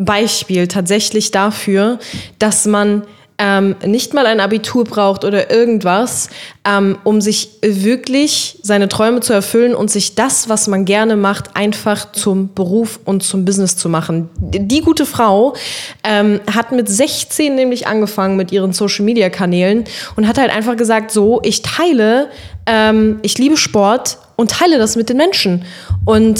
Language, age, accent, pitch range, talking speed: German, 20-39, German, 195-230 Hz, 150 wpm